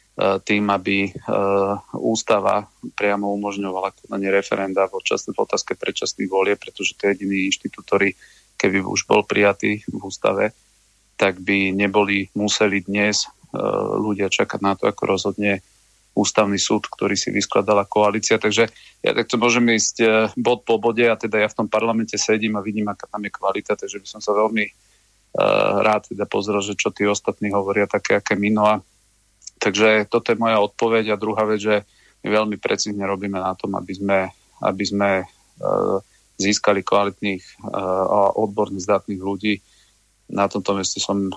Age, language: 40-59, Slovak